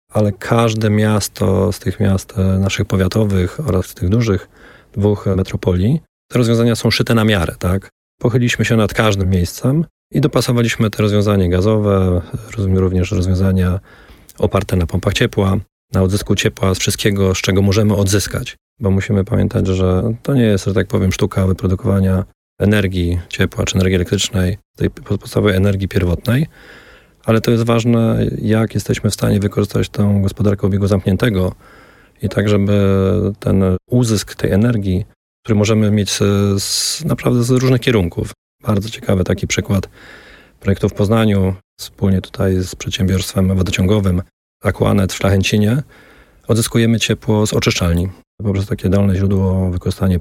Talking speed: 145 wpm